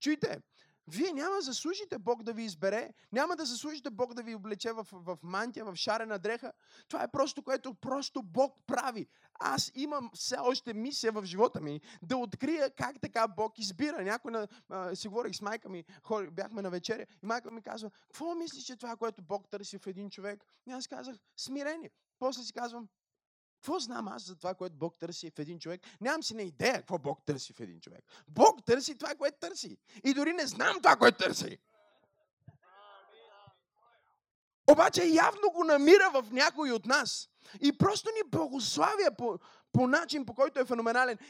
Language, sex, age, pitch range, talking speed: Bulgarian, male, 20-39, 195-265 Hz, 185 wpm